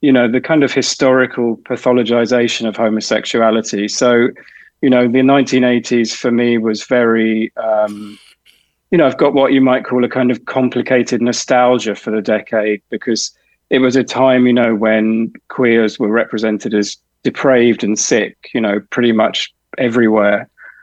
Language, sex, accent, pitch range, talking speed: English, male, British, 110-130 Hz, 160 wpm